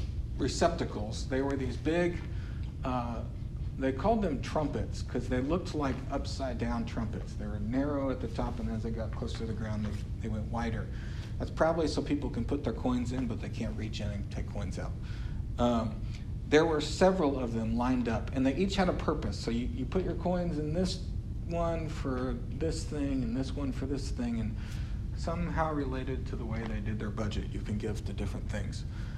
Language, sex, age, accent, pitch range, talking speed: English, male, 50-69, American, 105-130 Hz, 210 wpm